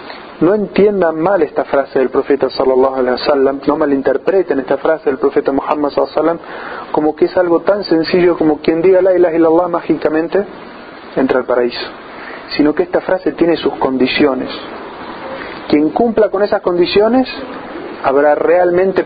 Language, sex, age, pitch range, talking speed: Spanish, male, 40-59, 145-185 Hz, 155 wpm